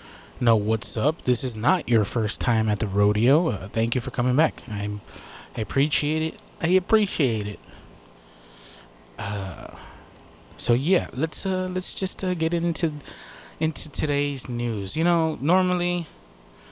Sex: male